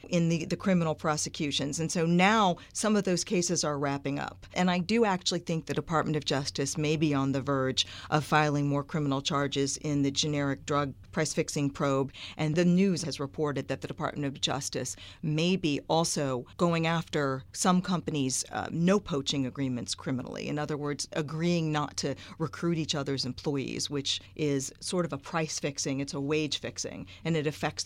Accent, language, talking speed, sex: American, English, 180 wpm, female